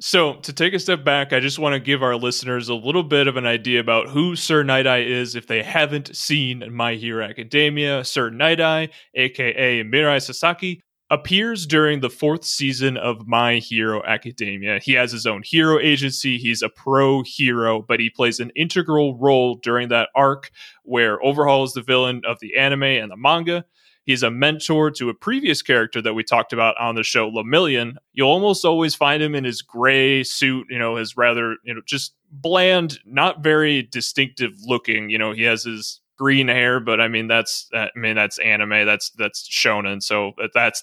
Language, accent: English, American